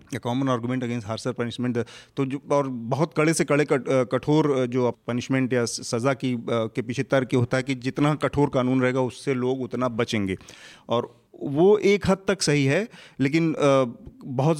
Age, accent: 40-59, native